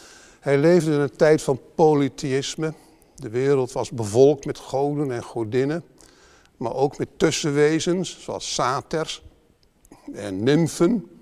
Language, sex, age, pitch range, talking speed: Dutch, male, 50-69, 125-165 Hz, 125 wpm